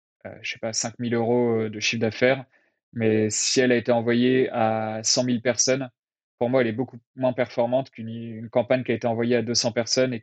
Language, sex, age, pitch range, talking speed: French, male, 20-39, 115-130 Hz, 215 wpm